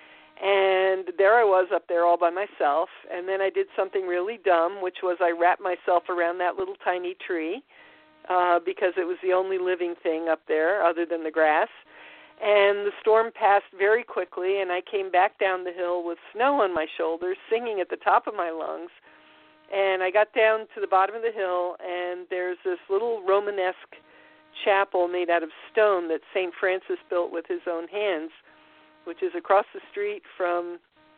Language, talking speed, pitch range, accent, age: English, 190 wpm, 175-210 Hz, American, 50-69